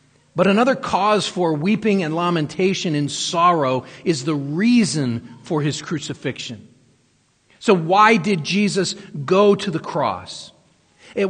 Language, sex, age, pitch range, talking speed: English, male, 40-59, 140-185 Hz, 125 wpm